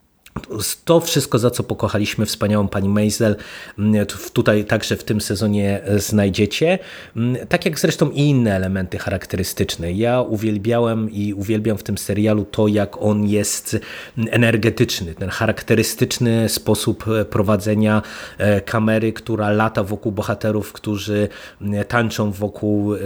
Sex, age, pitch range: male, 30-49, 105-115 Hz